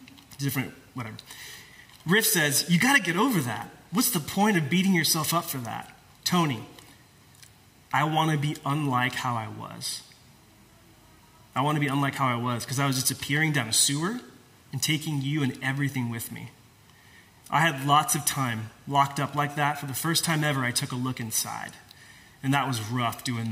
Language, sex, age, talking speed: English, male, 20-39, 190 wpm